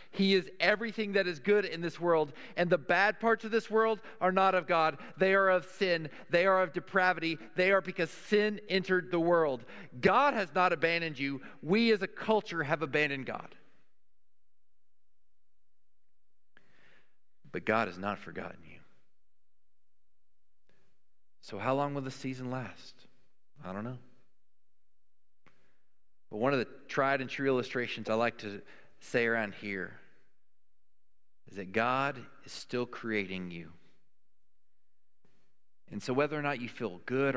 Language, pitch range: English, 100-170 Hz